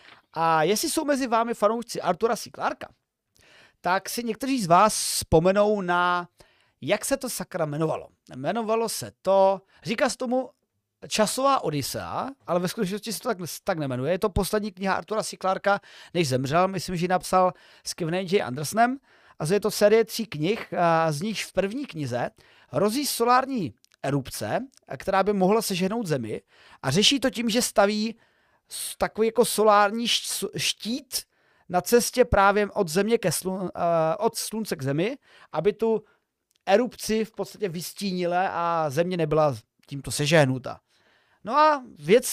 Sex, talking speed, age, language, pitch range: male, 155 wpm, 40-59, Czech, 165-225 Hz